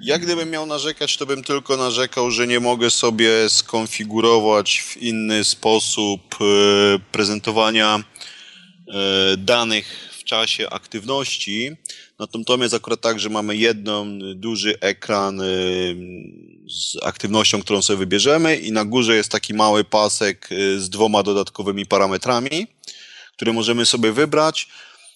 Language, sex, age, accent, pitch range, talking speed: Polish, male, 30-49, native, 100-135 Hz, 125 wpm